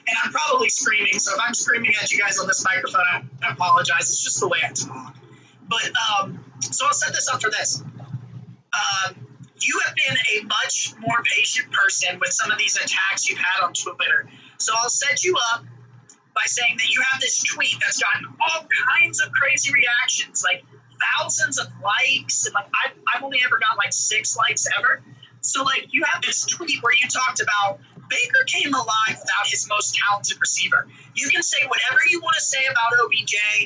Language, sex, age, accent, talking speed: English, male, 30-49, American, 200 wpm